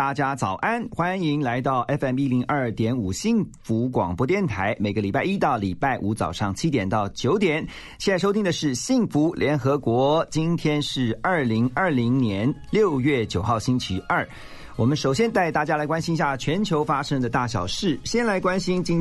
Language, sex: Chinese, male